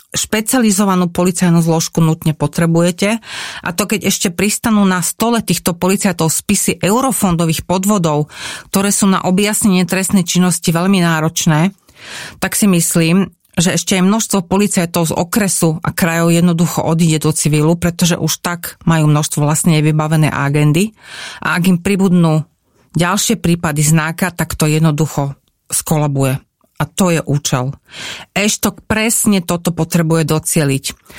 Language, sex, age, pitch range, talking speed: Slovak, female, 40-59, 160-195 Hz, 135 wpm